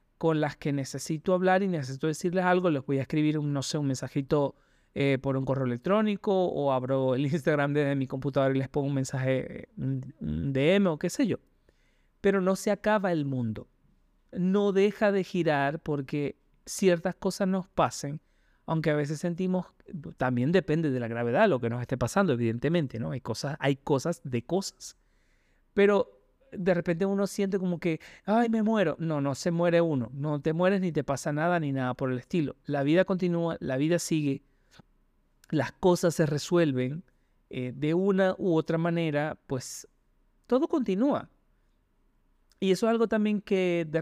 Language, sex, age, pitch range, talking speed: Spanish, male, 30-49, 140-185 Hz, 175 wpm